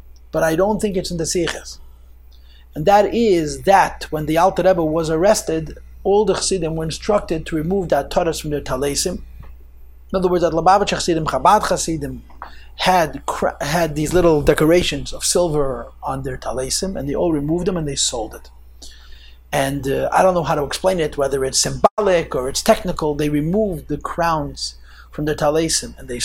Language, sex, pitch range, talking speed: English, male, 125-170 Hz, 185 wpm